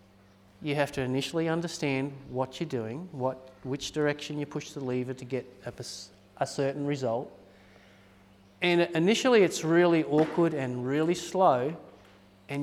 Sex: male